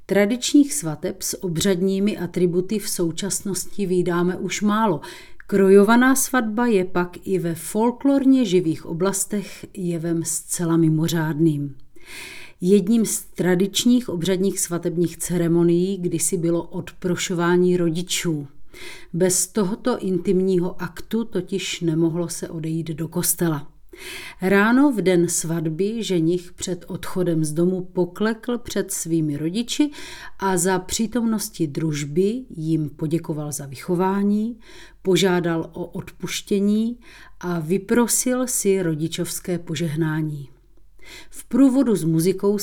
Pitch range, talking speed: 170-205 Hz, 105 wpm